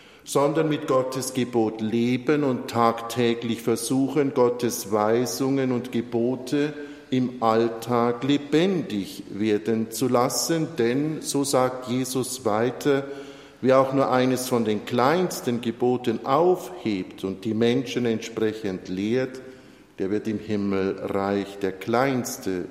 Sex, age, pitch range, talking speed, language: male, 50-69, 110-130 Hz, 115 wpm, German